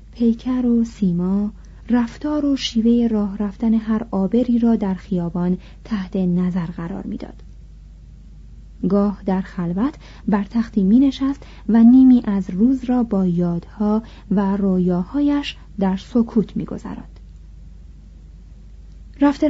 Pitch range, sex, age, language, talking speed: 190-245 Hz, female, 30-49, Persian, 115 wpm